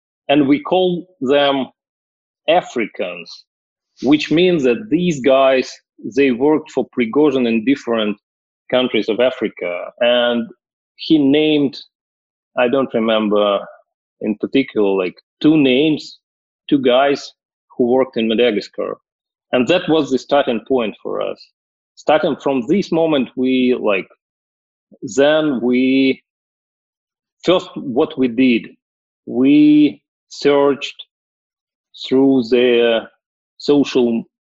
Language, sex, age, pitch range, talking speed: English, male, 30-49, 115-140 Hz, 105 wpm